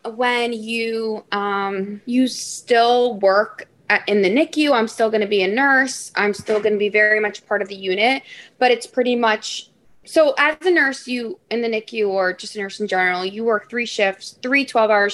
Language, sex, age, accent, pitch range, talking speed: English, female, 20-39, American, 200-240 Hz, 205 wpm